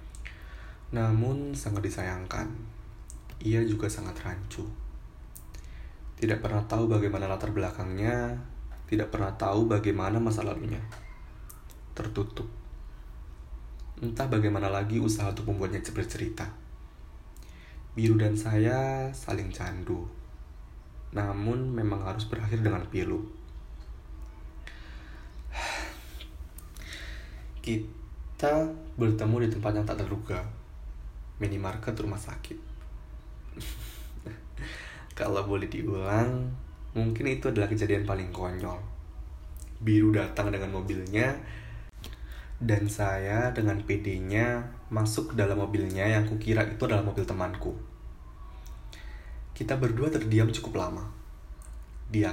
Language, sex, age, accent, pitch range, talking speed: Indonesian, male, 20-39, native, 70-110 Hz, 95 wpm